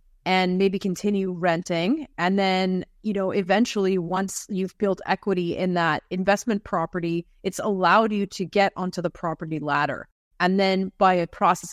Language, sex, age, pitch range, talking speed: English, female, 30-49, 170-195 Hz, 160 wpm